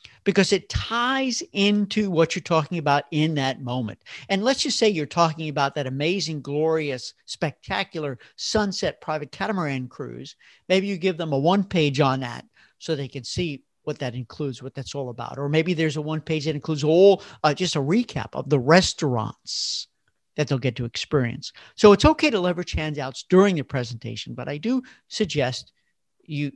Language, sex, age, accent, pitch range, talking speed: English, male, 50-69, American, 140-205 Hz, 185 wpm